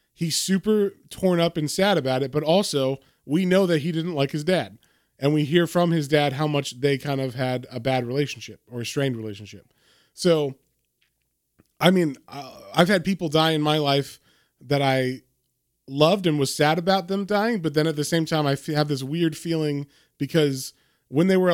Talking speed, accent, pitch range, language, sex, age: 200 wpm, American, 125-160 Hz, English, male, 20-39